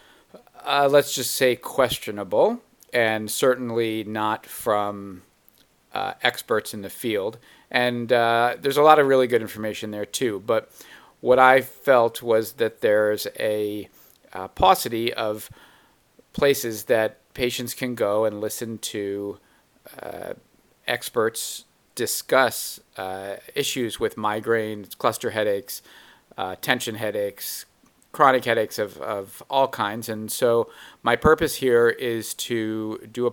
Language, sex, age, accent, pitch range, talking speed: English, male, 50-69, American, 105-130 Hz, 130 wpm